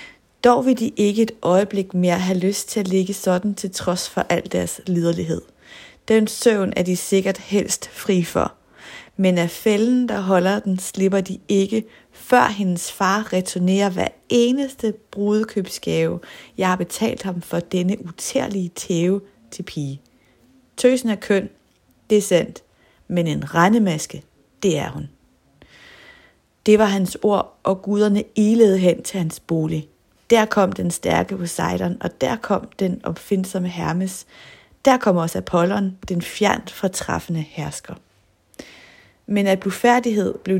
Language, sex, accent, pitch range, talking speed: Danish, female, native, 180-215 Hz, 150 wpm